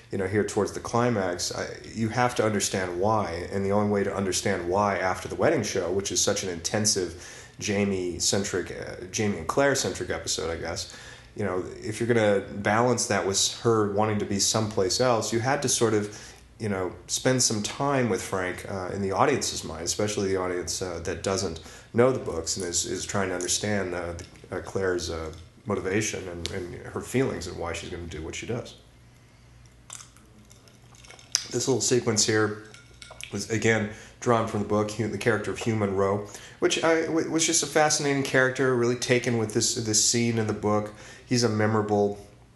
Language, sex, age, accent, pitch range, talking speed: English, male, 30-49, American, 95-120 Hz, 190 wpm